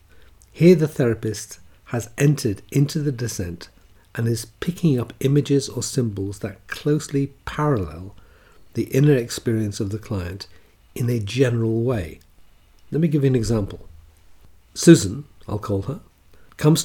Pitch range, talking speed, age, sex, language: 90-125 Hz, 140 wpm, 50-69, male, English